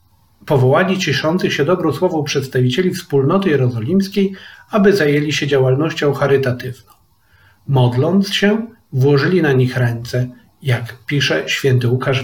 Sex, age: male, 40-59